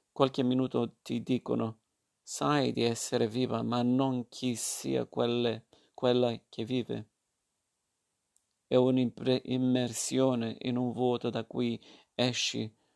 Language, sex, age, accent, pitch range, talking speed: Italian, male, 50-69, native, 115-125 Hz, 110 wpm